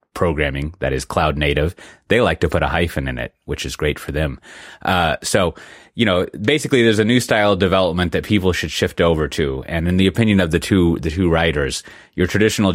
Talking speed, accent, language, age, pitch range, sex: 220 wpm, American, English, 30-49, 75-95 Hz, male